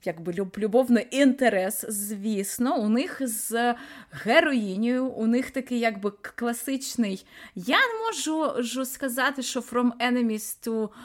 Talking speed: 120 wpm